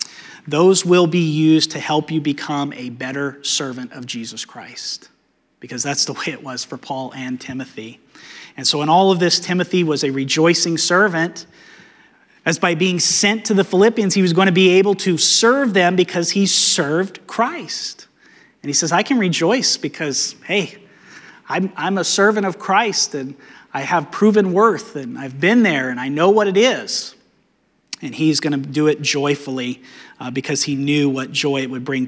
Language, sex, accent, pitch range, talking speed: English, male, American, 140-180 Hz, 185 wpm